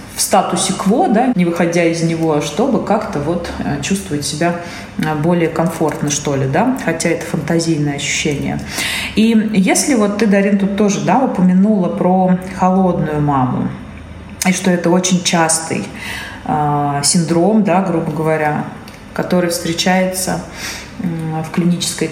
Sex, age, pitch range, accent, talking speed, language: female, 20-39, 160-195 Hz, native, 130 wpm, Russian